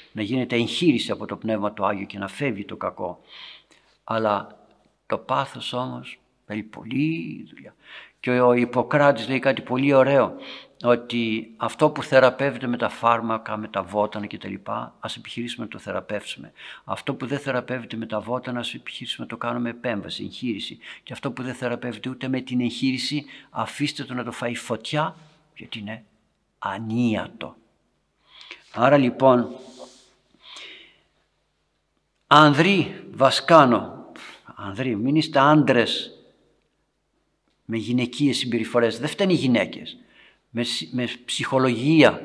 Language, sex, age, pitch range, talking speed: Greek, male, 60-79, 115-140 Hz, 130 wpm